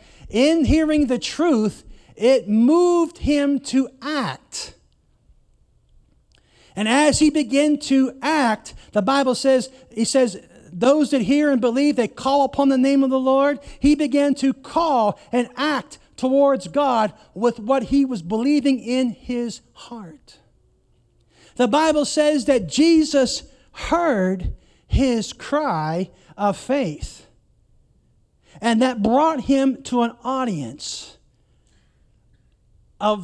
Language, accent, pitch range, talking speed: English, American, 200-275 Hz, 120 wpm